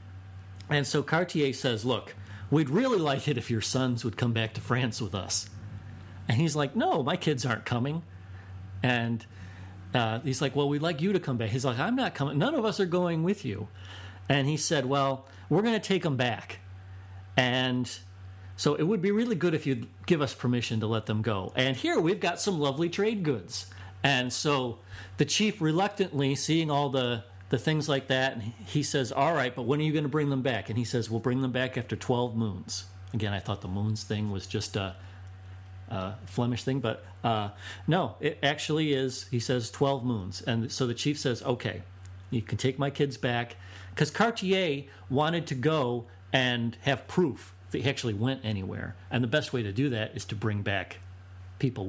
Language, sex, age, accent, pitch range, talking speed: English, male, 40-59, American, 100-140 Hz, 205 wpm